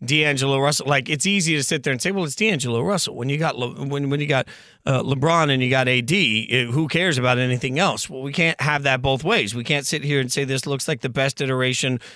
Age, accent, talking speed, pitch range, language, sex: 40-59, American, 260 wpm, 135-180 Hz, English, male